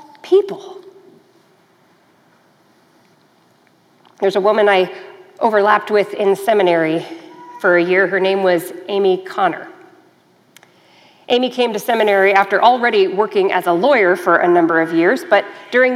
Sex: female